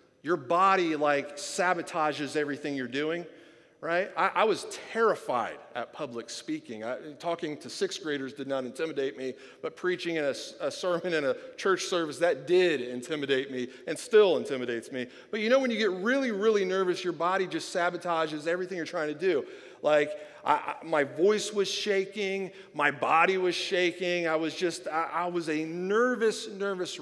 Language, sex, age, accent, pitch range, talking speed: English, male, 40-59, American, 155-210 Hz, 170 wpm